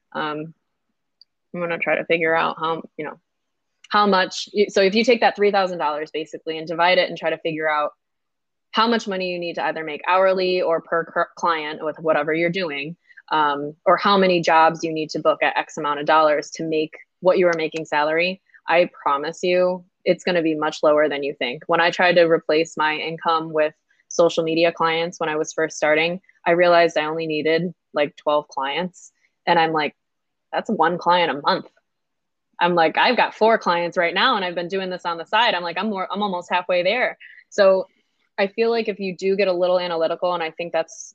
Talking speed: 215 wpm